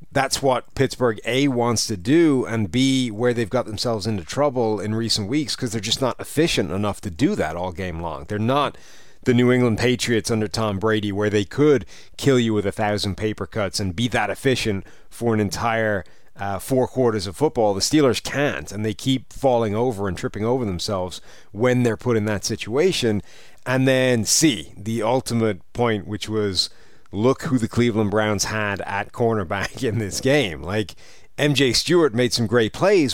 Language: English